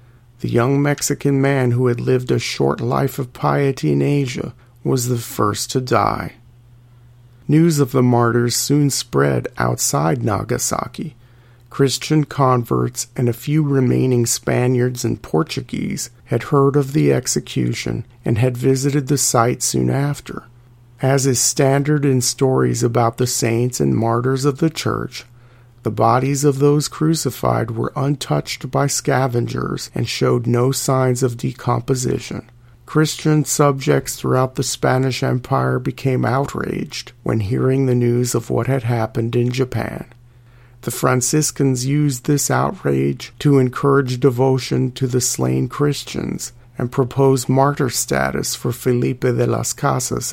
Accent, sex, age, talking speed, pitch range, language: American, male, 40-59, 135 wpm, 120-140 Hz, English